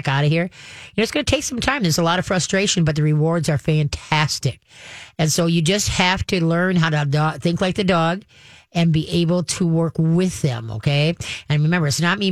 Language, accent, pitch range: English, American, 155-190 Hz